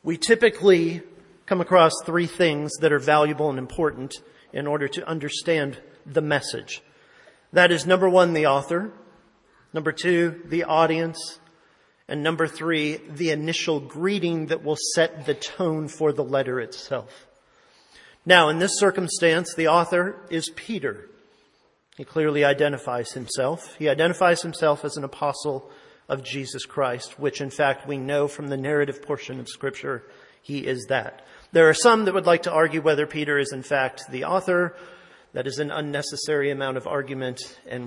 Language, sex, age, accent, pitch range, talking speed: English, male, 40-59, American, 140-175 Hz, 160 wpm